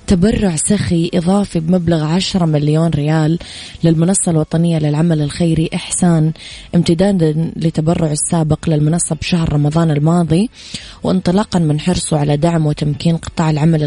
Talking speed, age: 115 wpm, 20-39